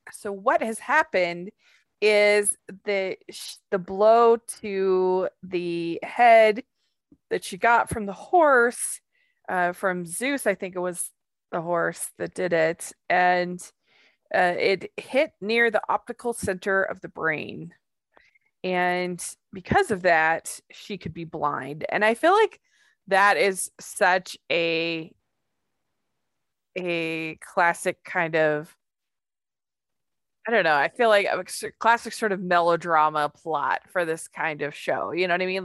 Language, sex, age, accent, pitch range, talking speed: English, female, 20-39, American, 165-215 Hz, 140 wpm